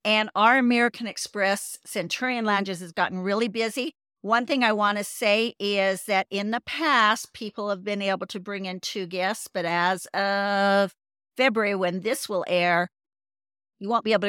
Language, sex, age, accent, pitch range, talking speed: English, female, 50-69, American, 170-200 Hz, 175 wpm